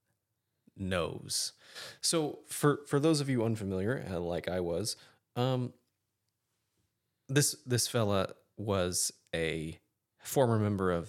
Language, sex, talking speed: English, male, 110 wpm